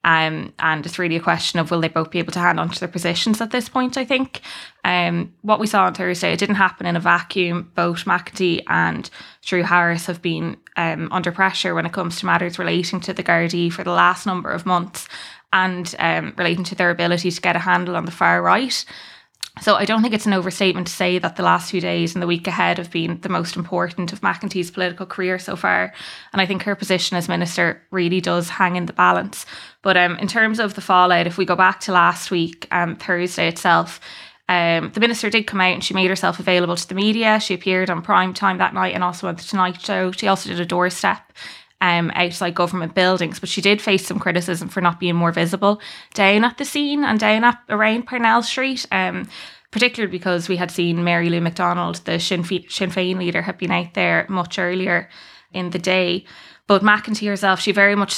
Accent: Irish